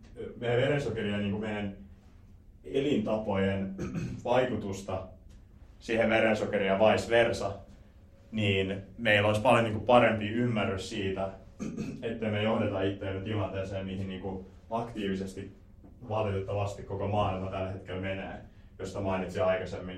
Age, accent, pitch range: 30-49, native, 95-110 Hz